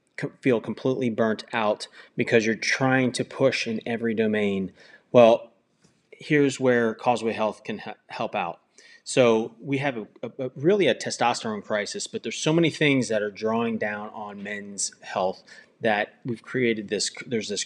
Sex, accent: male, American